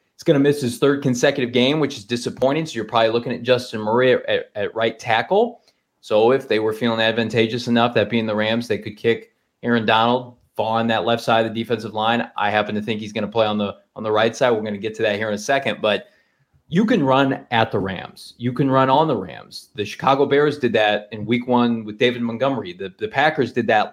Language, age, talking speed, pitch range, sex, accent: English, 20-39, 250 wpm, 105-130 Hz, male, American